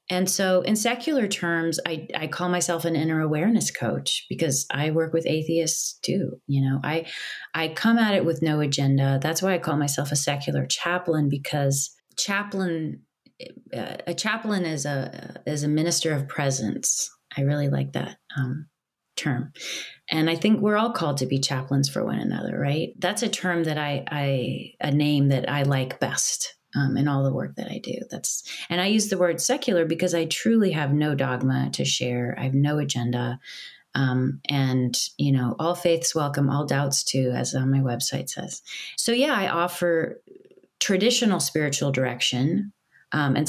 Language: English